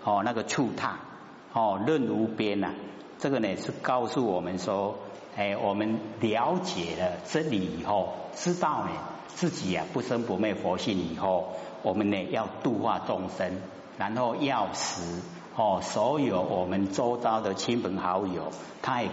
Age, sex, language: 50-69, male, Chinese